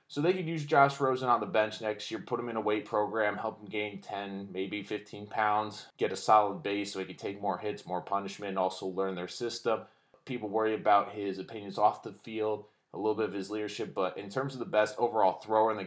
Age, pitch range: 20-39, 100-125 Hz